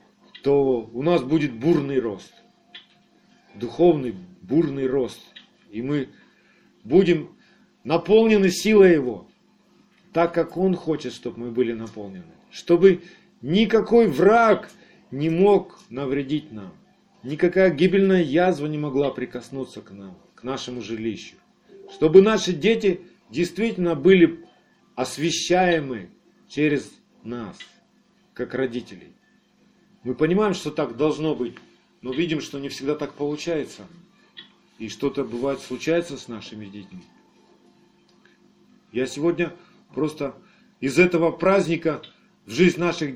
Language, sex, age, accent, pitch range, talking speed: Russian, male, 40-59, native, 130-185 Hz, 110 wpm